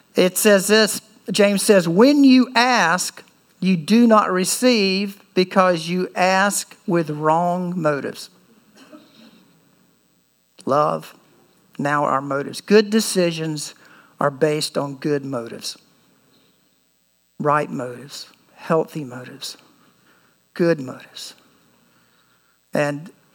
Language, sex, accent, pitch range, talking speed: English, male, American, 155-215 Hz, 95 wpm